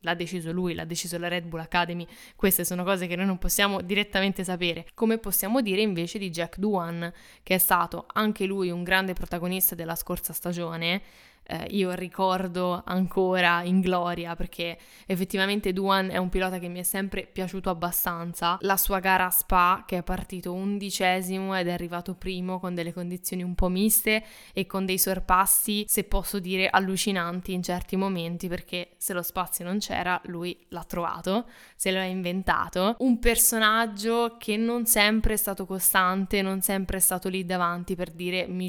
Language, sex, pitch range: Italian, female, 175-195 Hz